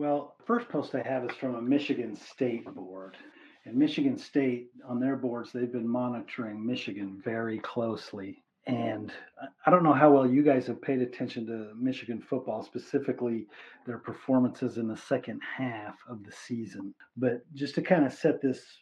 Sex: male